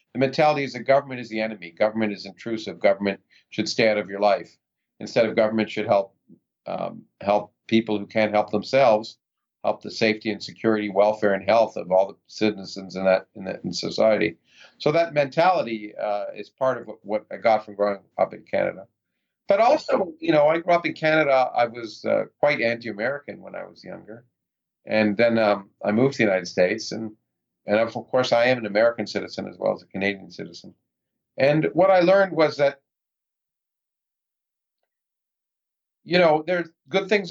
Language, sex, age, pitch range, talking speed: English, male, 50-69, 105-135 Hz, 190 wpm